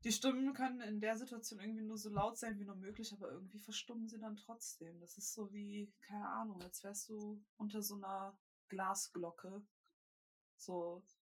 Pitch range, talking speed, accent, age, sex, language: 180-215 Hz, 180 wpm, German, 20-39, female, German